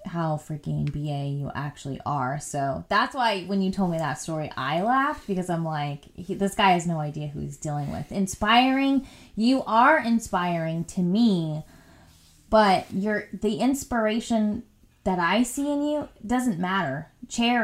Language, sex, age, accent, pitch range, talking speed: English, female, 20-39, American, 155-210 Hz, 155 wpm